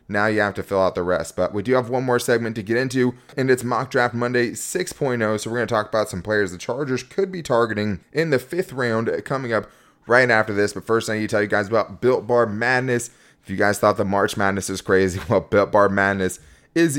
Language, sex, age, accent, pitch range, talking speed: English, male, 20-39, American, 100-120 Hz, 255 wpm